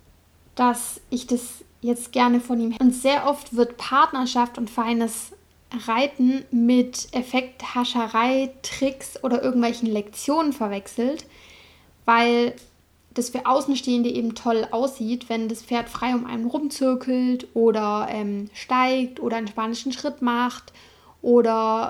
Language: German